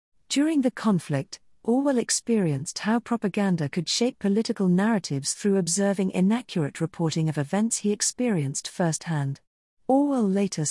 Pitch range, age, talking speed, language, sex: 160-215 Hz, 40-59, 125 wpm, English, female